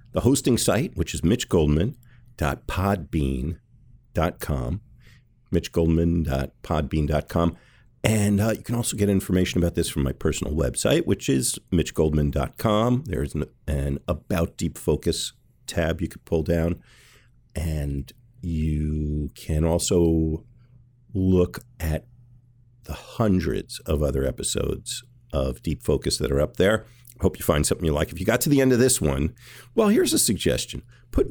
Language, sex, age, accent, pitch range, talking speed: English, male, 50-69, American, 75-120 Hz, 140 wpm